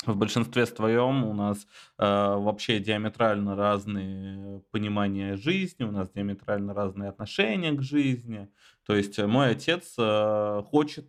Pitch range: 105-130 Hz